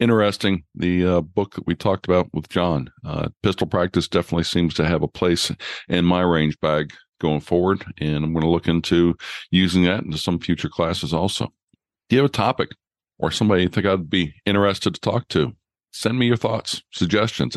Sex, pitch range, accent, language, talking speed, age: male, 80-95 Hz, American, English, 200 wpm, 50-69